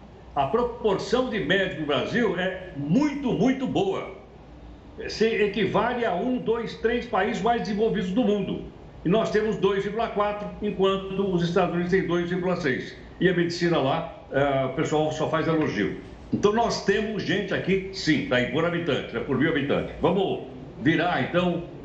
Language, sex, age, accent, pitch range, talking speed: Portuguese, male, 60-79, Brazilian, 160-215 Hz, 150 wpm